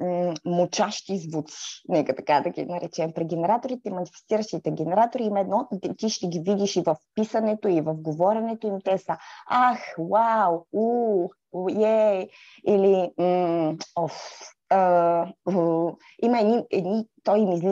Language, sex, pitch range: Bulgarian, female, 175-220 Hz